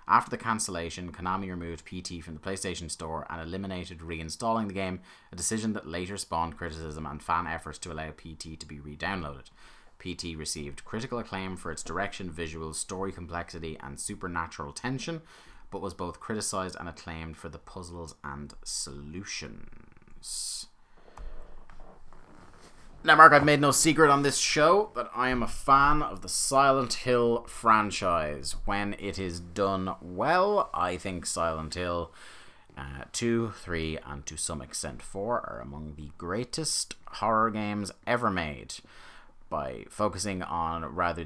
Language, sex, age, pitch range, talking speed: English, male, 30-49, 80-100 Hz, 150 wpm